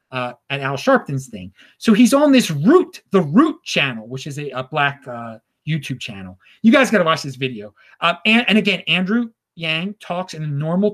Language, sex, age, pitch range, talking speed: English, male, 30-49, 155-230 Hz, 210 wpm